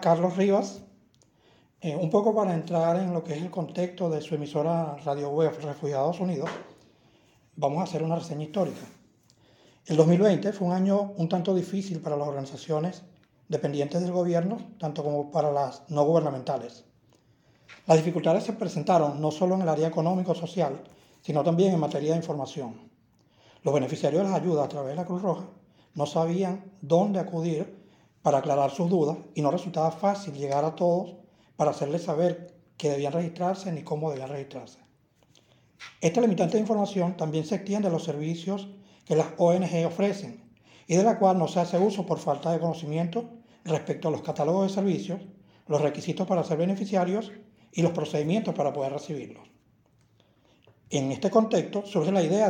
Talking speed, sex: 165 wpm, male